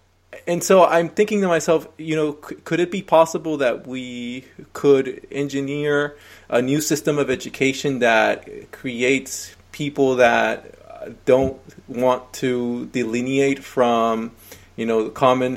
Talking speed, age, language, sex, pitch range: 130 wpm, 20-39, English, male, 125-155 Hz